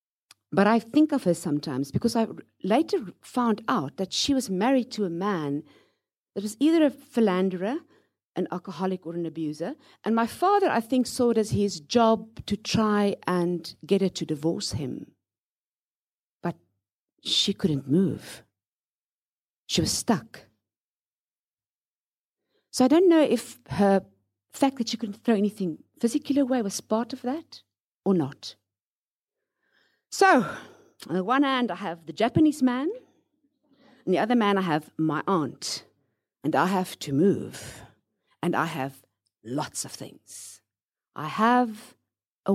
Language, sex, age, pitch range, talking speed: English, female, 50-69, 170-245 Hz, 150 wpm